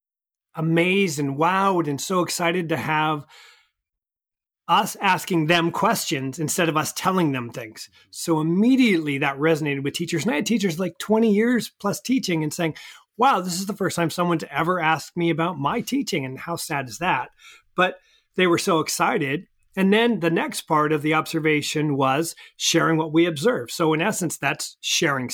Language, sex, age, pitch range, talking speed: English, male, 30-49, 155-195 Hz, 180 wpm